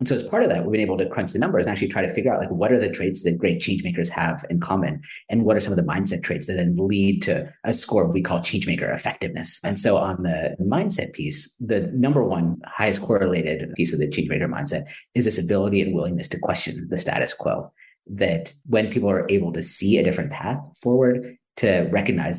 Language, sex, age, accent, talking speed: English, male, 40-59, American, 240 wpm